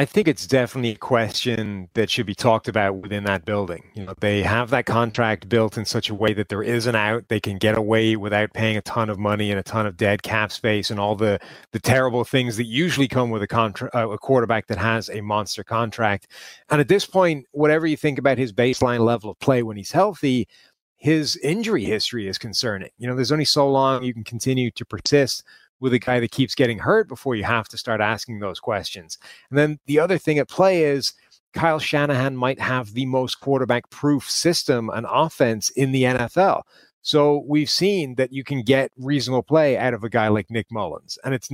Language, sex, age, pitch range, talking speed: English, male, 30-49, 110-135 Hz, 220 wpm